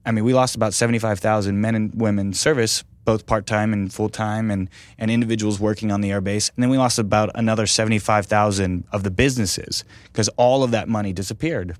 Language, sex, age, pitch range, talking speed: English, male, 20-39, 100-115 Hz, 195 wpm